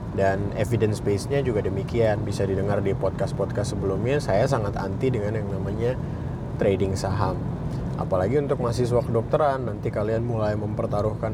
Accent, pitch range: native, 110-145 Hz